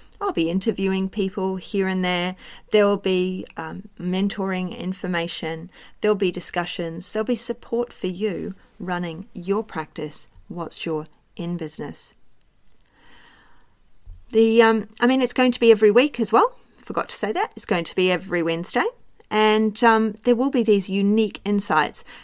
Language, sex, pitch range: English, female, 165-210 Hz